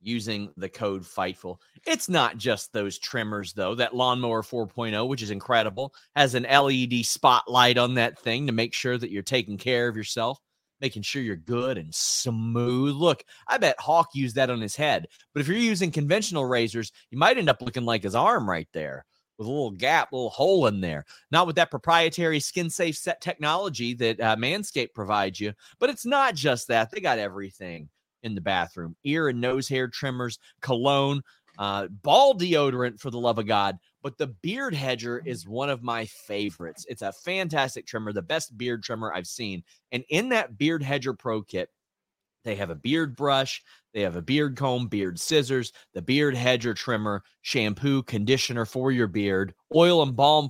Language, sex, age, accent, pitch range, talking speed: English, male, 30-49, American, 110-145 Hz, 190 wpm